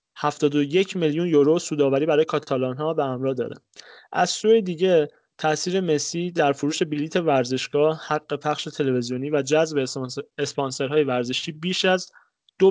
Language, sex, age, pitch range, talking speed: Persian, male, 30-49, 140-175 Hz, 130 wpm